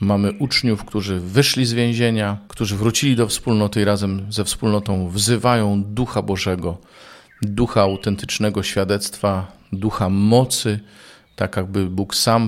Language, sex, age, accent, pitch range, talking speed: Polish, male, 40-59, native, 100-120 Hz, 125 wpm